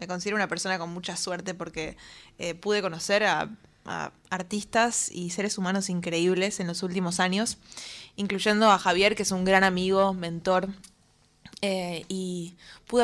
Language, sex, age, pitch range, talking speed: Spanish, female, 20-39, 180-200 Hz, 155 wpm